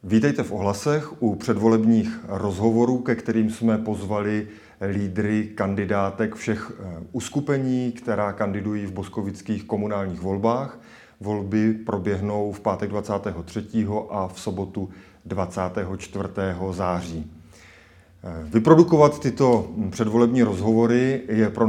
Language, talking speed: Czech, 100 wpm